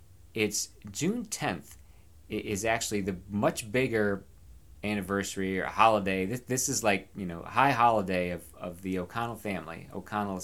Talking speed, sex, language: 150 wpm, male, English